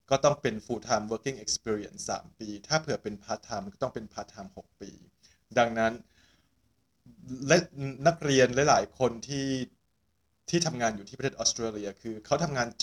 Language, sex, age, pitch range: Thai, male, 20-39, 105-130 Hz